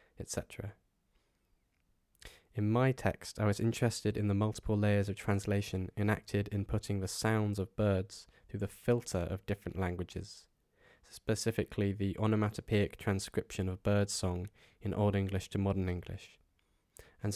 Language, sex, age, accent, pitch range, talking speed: English, male, 10-29, British, 95-105 Hz, 140 wpm